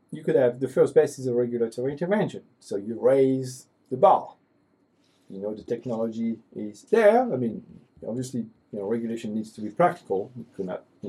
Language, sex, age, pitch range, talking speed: English, male, 40-59, 115-150 Hz, 185 wpm